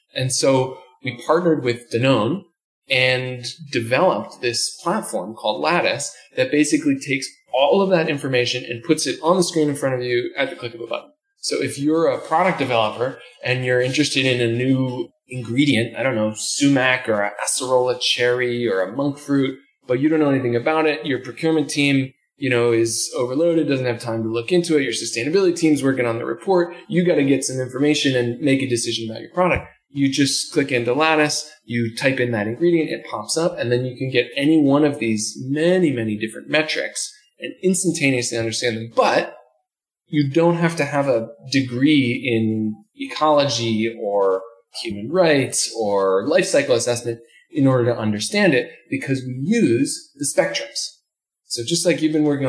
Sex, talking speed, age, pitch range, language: male, 185 wpm, 20-39, 120-155 Hz, English